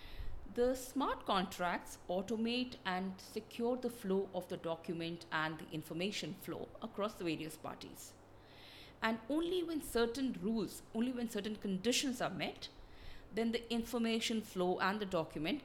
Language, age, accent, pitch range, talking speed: English, 50-69, Indian, 170-235 Hz, 140 wpm